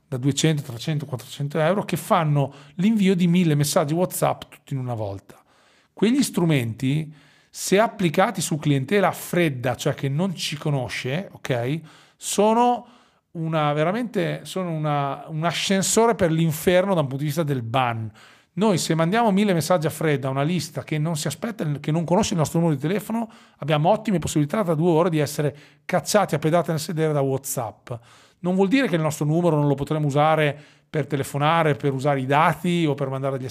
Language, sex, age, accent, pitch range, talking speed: Italian, male, 40-59, native, 140-180 Hz, 185 wpm